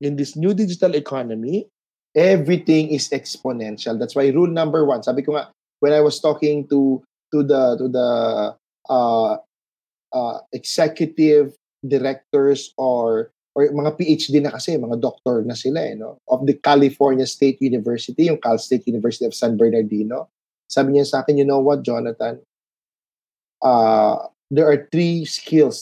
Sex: male